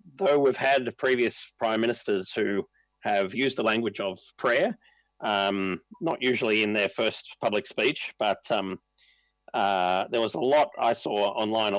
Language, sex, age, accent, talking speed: English, male, 30-49, Australian, 160 wpm